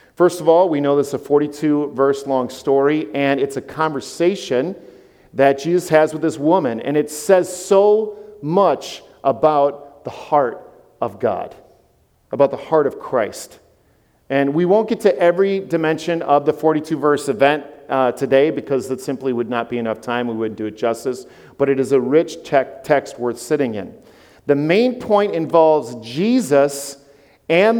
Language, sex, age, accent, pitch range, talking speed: English, male, 50-69, American, 135-175 Hz, 165 wpm